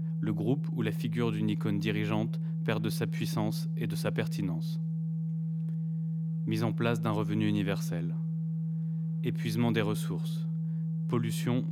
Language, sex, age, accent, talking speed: French, male, 30-49, French, 135 wpm